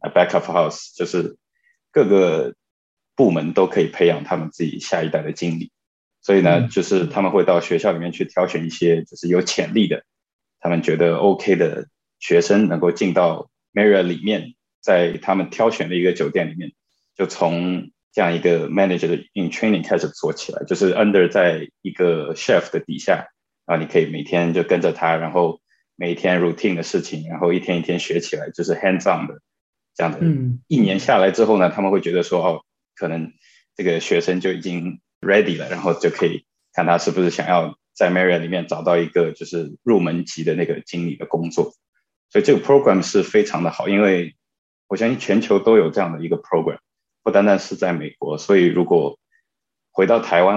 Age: 20-39